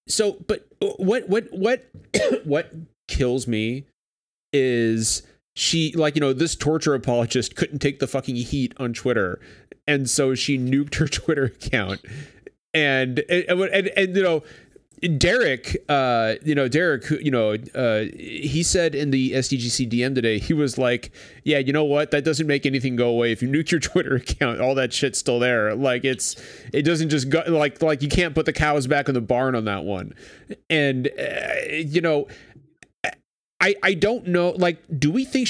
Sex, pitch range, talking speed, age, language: male, 115-160 Hz, 185 wpm, 30-49, English